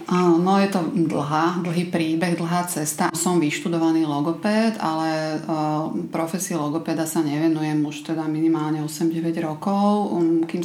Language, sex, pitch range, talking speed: Slovak, female, 155-175 Hz, 125 wpm